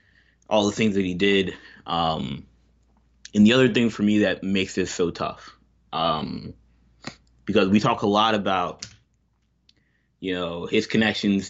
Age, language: 20-39, English